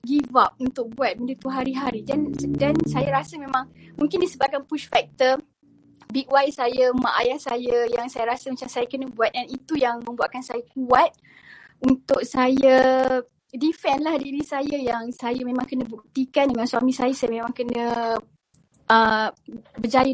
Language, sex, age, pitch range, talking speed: Malay, female, 20-39, 235-270 Hz, 160 wpm